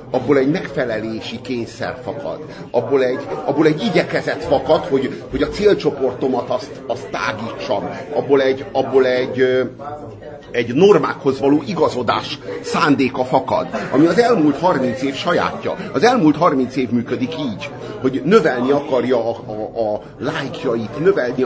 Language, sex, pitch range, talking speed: Hungarian, male, 125-155 Hz, 130 wpm